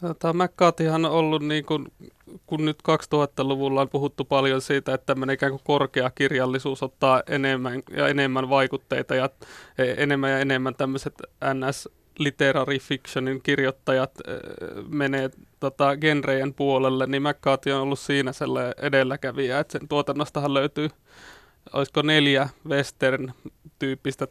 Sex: male